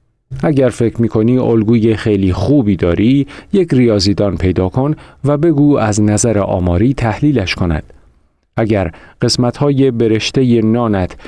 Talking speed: 130 wpm